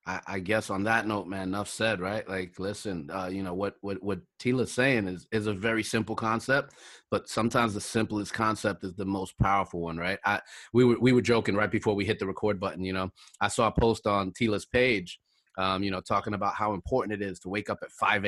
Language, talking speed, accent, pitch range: English, 240 wpm, American, 95-115 Hz